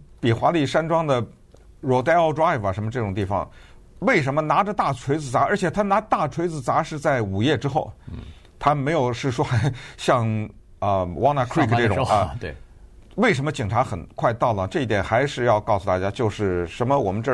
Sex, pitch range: male, 100-150 Hz